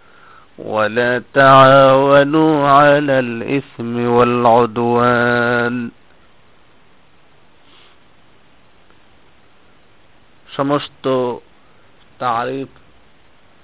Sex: male